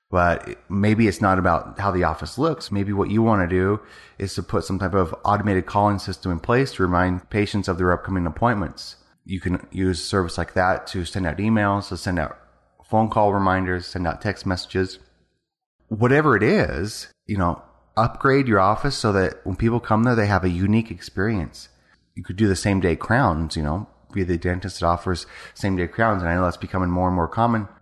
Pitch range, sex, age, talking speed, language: 90-105 Hz, male, 30-49, 215 wpm, English